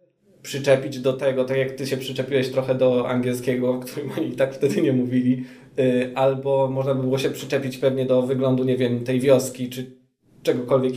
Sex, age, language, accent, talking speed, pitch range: male, 20-39, Polish, native, 185 wpm, 130-160 Hz